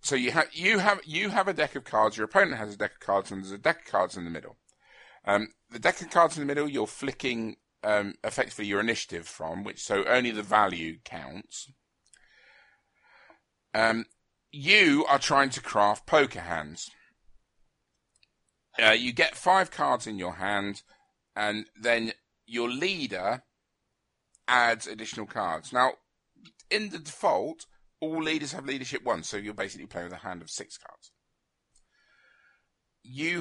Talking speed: 165 wpm